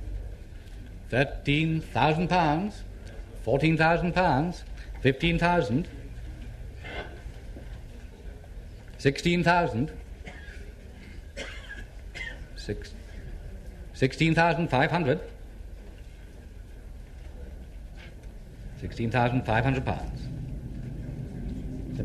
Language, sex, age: English, male, 50-69